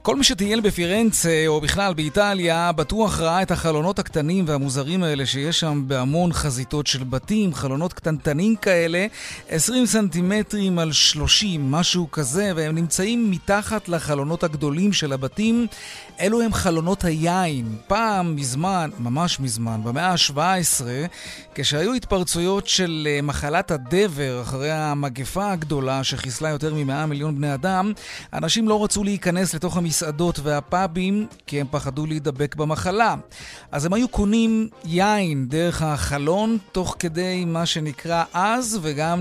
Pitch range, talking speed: 145-195 Hz, 130 wpm